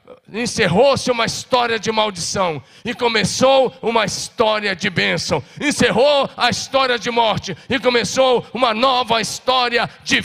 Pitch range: 200-240 Hz